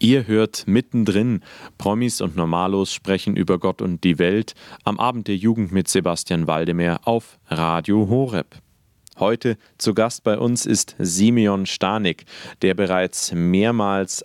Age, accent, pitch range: 40-59, German, 90-110 Hz